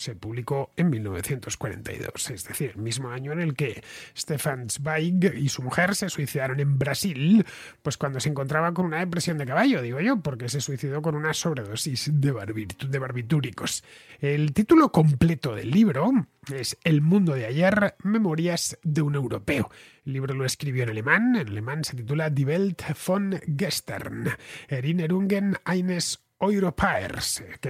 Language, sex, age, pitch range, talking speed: Spanish, male, 30-49, 135-175 Hz, 160 wpm